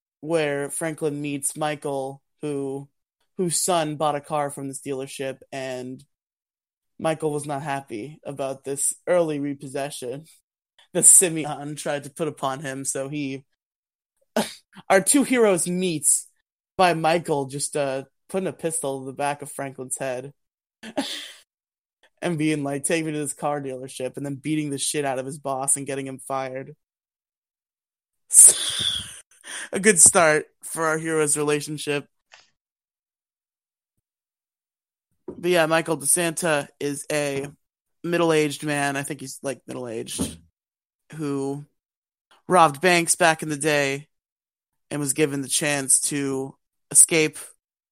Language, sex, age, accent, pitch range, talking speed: English, male, 20-39, American, 135-155 Hz, 130 wpm